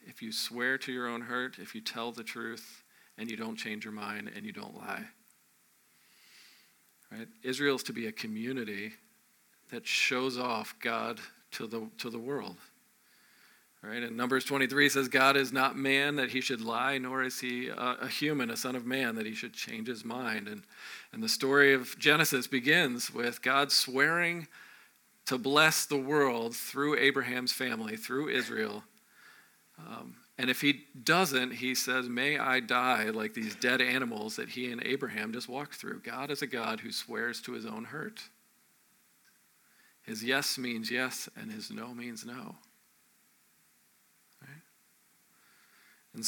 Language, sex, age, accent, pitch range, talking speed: English, male, 40-59, American, 120-140 Hz, 165 wpm